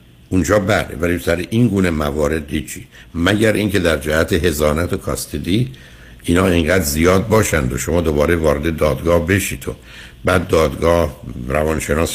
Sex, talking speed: male, 145 wpm